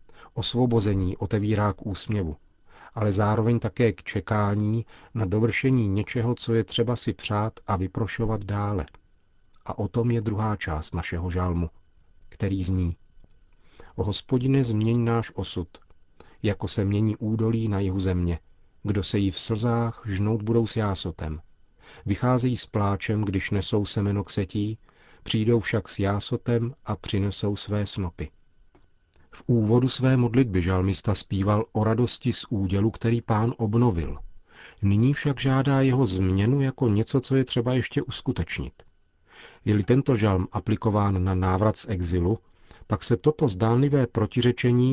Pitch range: 95-115 Hz